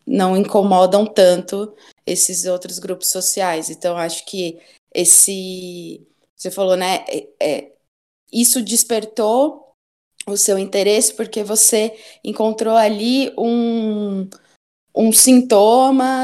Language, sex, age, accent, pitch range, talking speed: Portuguese, female, 20-39, Brazilian, 175-215 Hz, 95 wpm